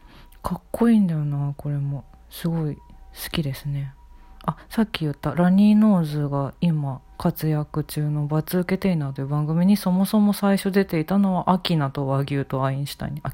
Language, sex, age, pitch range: Japanese, female, 40-59, 145-200 Hz